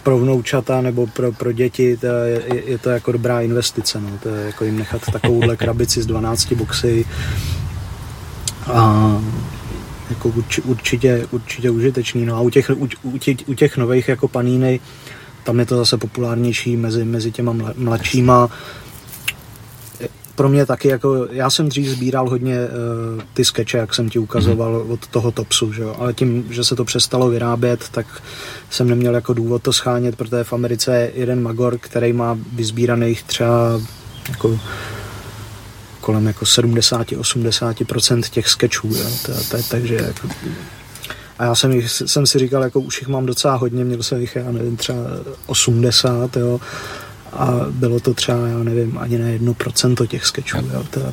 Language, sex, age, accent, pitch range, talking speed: Czech, male, 30-49, native, 115-125 Hz, 155 wpm